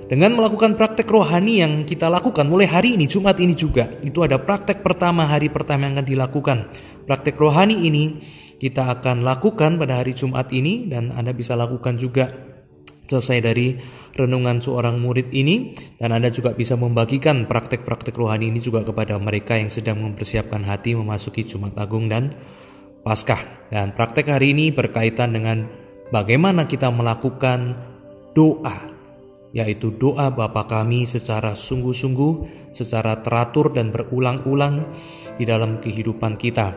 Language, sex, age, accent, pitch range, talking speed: Indonesian, male, 20-39, native, 115-150 Hz, 140 wpm